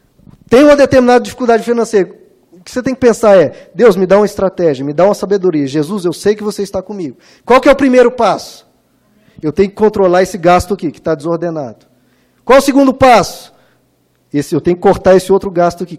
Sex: male